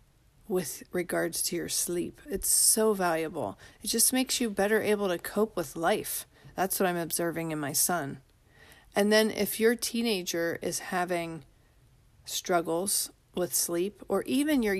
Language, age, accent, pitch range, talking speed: English, 40-59, American, 170-205 Hz, 155 wpm